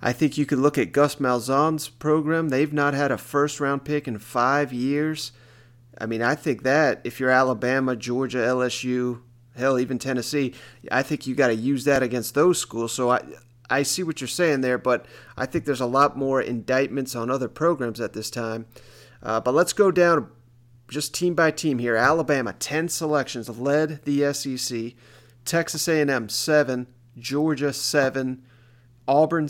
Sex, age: male, 30-49